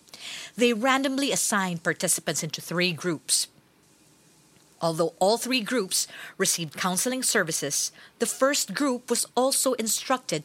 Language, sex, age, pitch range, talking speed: English, female, 50-69, 175-245 Hz, 115 wpm